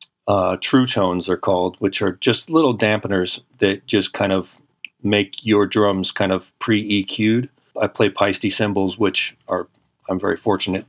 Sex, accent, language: male, American, English